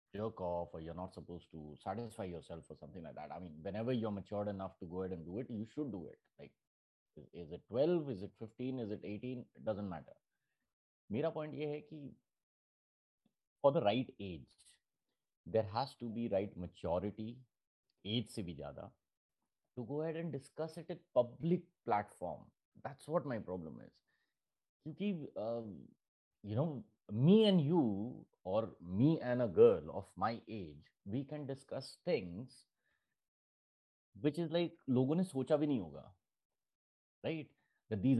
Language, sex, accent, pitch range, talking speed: Hindi, male, native, 95-150 Hz, 165 wpm